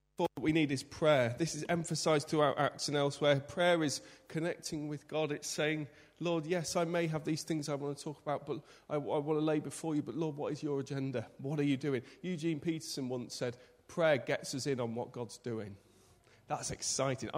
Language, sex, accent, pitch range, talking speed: English, male, British, 130-165 Hz, 220 wpm